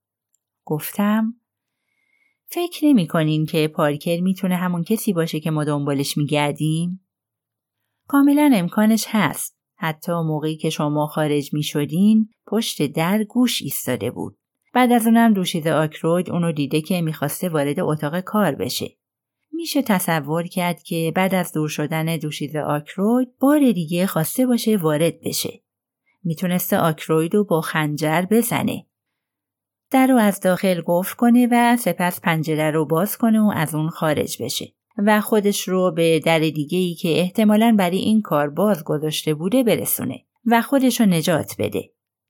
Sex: female